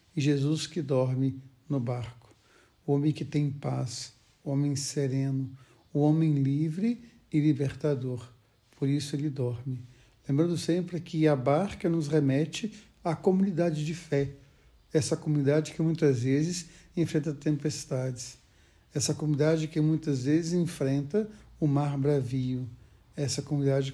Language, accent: Portuguese, Brazilian